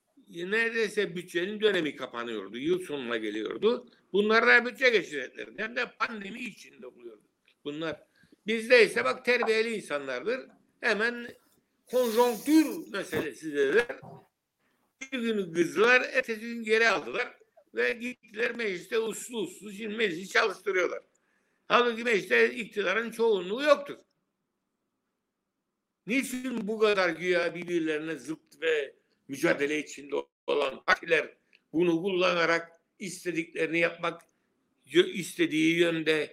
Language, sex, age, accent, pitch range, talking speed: Turkish, male, 60-79, native, 180-265 Hz, 100 wpm